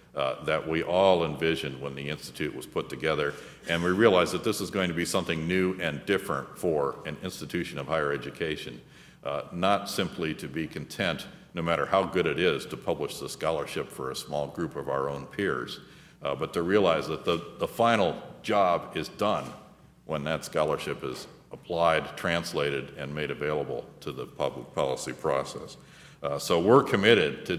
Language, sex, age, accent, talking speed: English, male, 50-69, American, 185 wpm